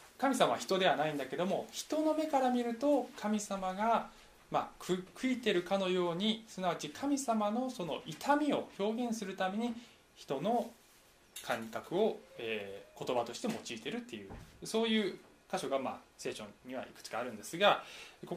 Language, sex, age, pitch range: Japanese, male, 20-39, 150-225 Hz